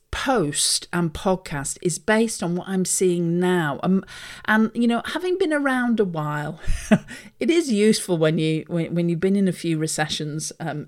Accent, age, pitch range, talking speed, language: British, 50-69, 160-205 Hz, 180 wpm, English